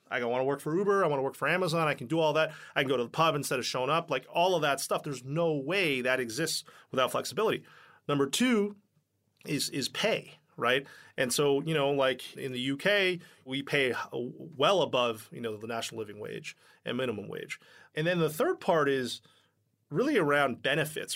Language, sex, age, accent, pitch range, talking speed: English, male, 30-49, American, 130-170 Hz, 215 wpm